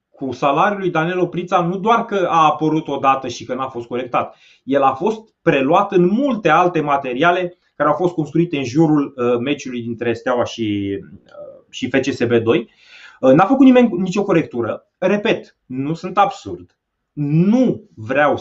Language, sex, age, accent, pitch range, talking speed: Romanian, male, 30-49, native, 120-180 Hz, 150 wpm